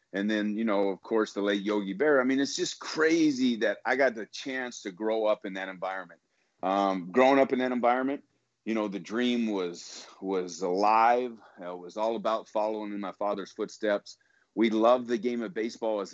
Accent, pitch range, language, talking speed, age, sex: American, 100-120 Hz, English, 205 wpm, 40-59, male